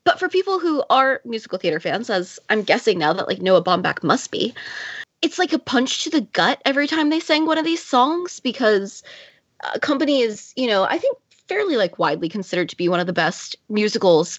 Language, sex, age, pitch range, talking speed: English, female, 20-39, 190-275 Hz, 220 wpm